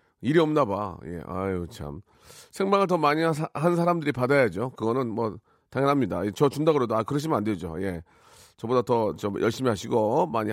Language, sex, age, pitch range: Korean, male, 40-59, 115-175 Hz